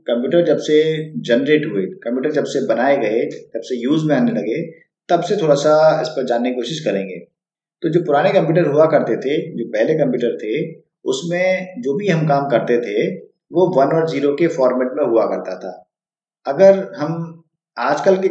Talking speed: 190 wpm